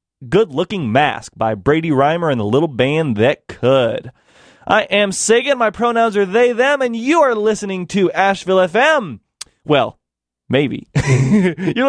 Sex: male